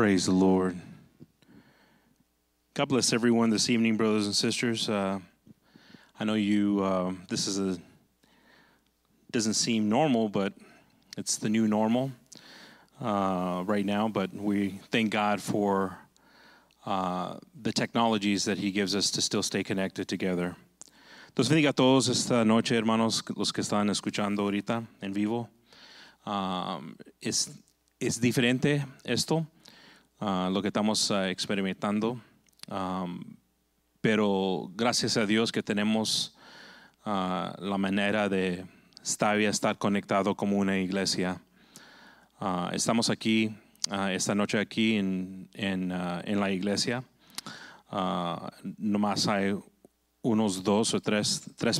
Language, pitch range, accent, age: English, 95-110 Hz, American, 30-49